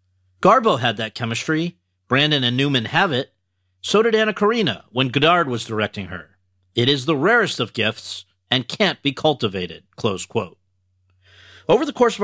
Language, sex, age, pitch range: English, male, 40-59, 110-160 Hz